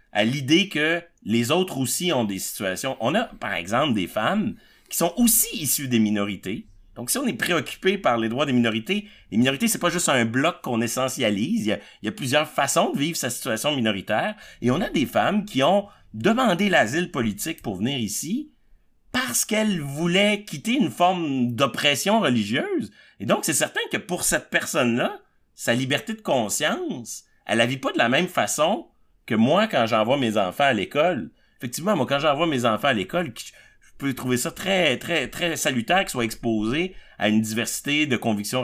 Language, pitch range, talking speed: French, 115-170 Hz, 195 wpm